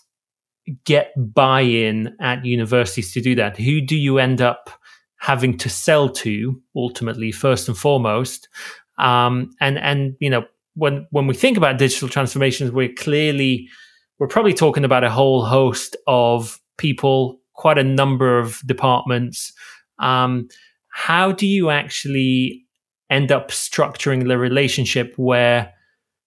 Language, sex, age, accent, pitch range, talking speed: English, male, 30-49, British, 120-140 Hz, 135 wpm